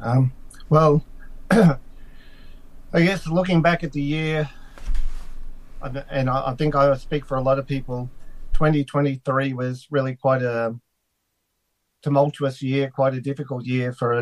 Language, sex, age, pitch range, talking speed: English, male, 40-59, 125-145 Hz, 140 wpm